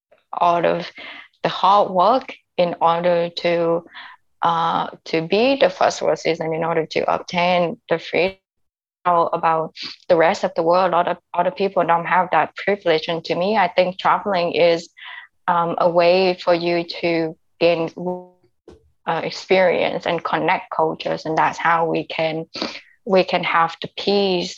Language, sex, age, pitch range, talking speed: English, female, 20-39, 170-185 Hz, 160 wpm